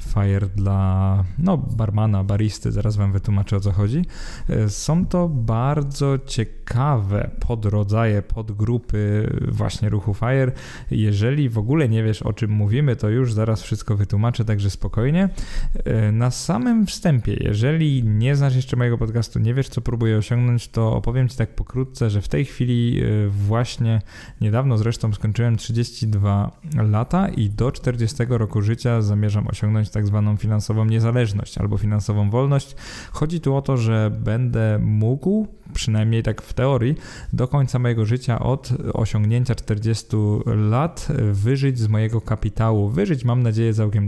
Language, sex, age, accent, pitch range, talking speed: Polish, male, 20-39, native, 105-130 Hz, 140 wpm